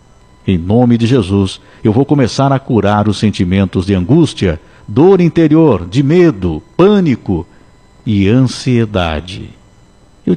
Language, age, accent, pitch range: Portuguese, 60-79, Brazilian, 95-135 Hz